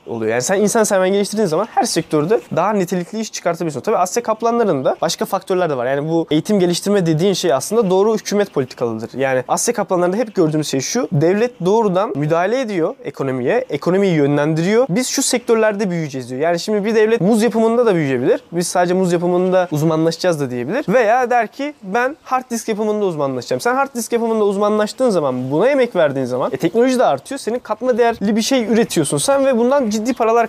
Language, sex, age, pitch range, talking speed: Turkish, male, 20-39, 160-220 Hz, 190 wpm